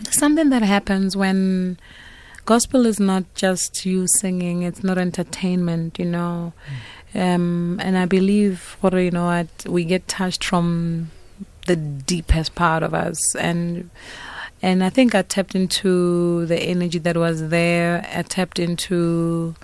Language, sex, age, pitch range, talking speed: English, female, 30-49, 160-185 Hz, 145 wpm